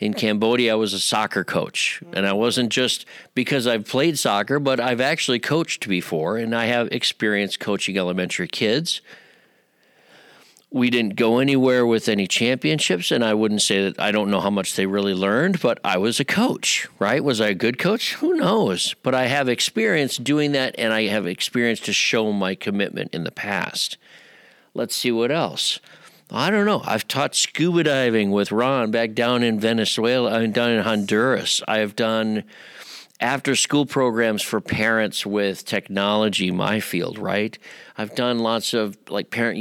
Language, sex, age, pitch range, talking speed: English, male, 50-69, 100-120 Hz, 175 wpm